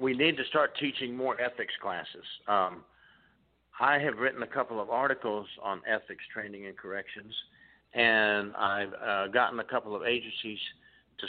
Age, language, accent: 50-69, English, American